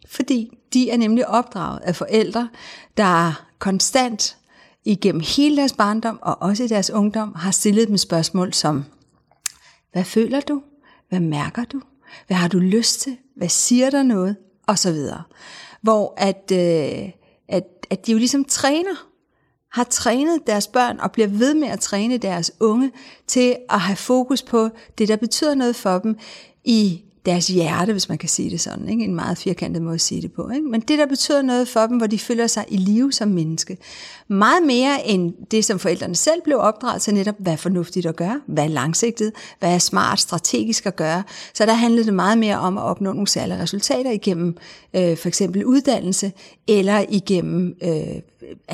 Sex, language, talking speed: female, Danish, 185 wpm